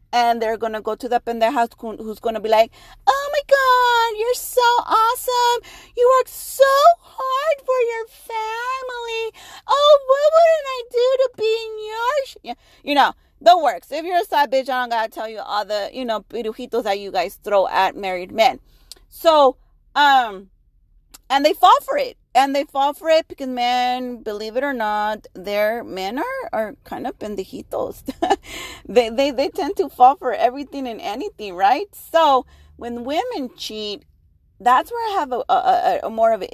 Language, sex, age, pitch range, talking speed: English, female, 30-49, 230-360 Hz, 185 wpm